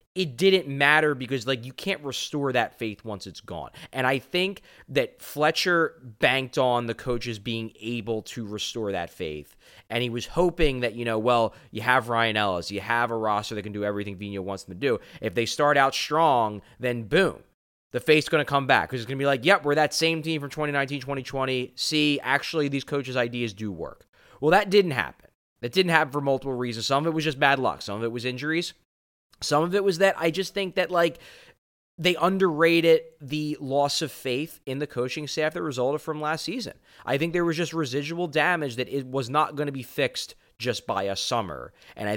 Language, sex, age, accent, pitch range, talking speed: English, male, 20-39, American, 110-155 Hz, 220 wpm